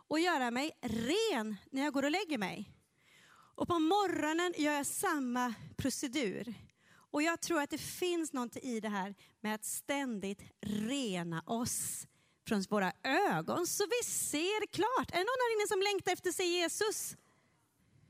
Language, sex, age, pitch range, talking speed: Swedish, female, 30-49, 220-305 Hz, 160 wpm